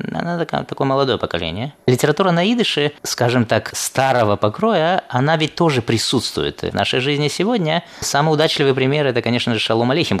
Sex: male